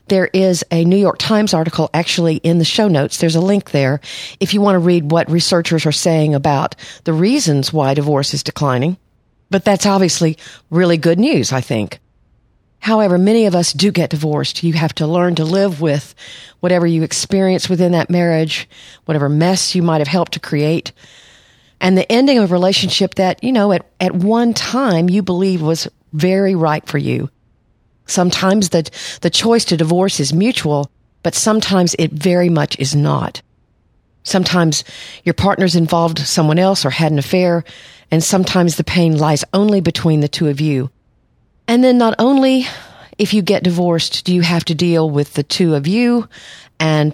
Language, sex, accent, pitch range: English, female, American, 155-190 Hz